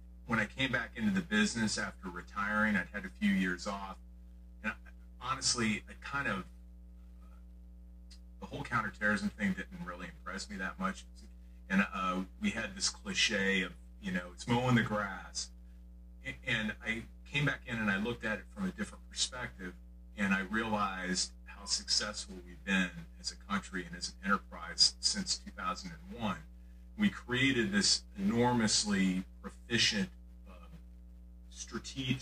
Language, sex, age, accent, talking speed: English, male, 40-59, American, 155 wpm